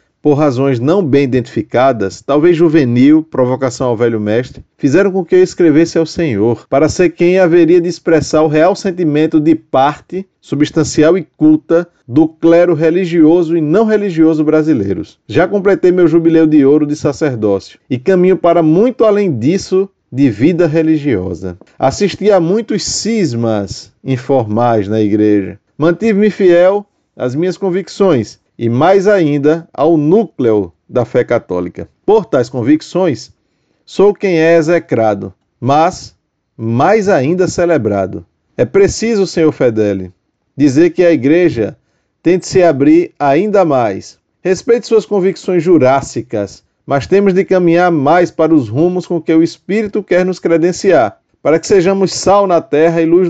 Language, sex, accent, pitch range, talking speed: Portuguese, male, Brazilian, 130-185 Hz, 145 wpm